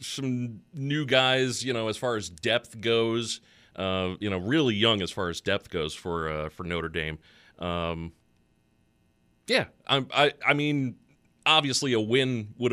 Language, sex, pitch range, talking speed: English, male, 90-130 Hz, 165 wpm